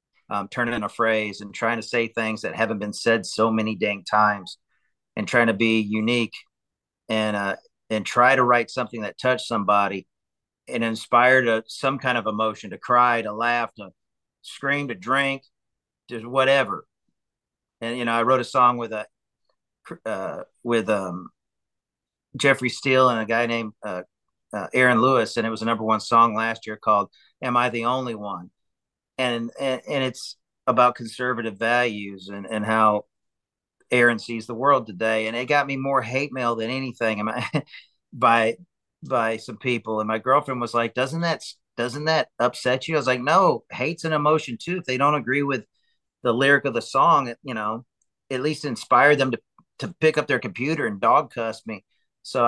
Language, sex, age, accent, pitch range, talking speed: English, male, 40-59, American, 110-130 Hz, 185 wpm